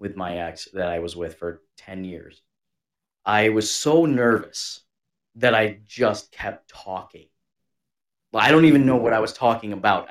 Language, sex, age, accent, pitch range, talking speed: English, male, 30-49, American, 105-165 Hz, 165 wpm